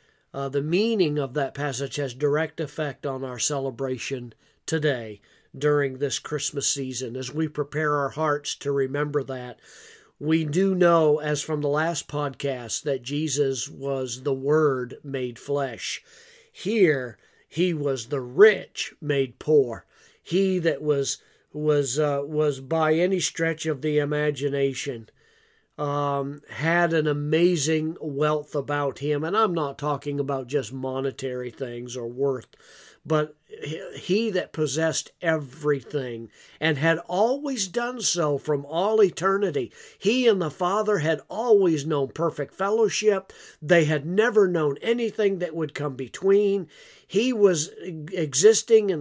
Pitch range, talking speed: 140-180 Hz, 135 wpm